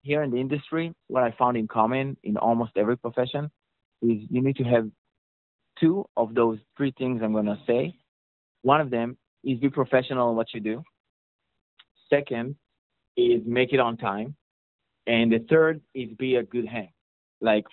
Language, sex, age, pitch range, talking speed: English, male, 20-39, 115-130 Hz, 175 wpm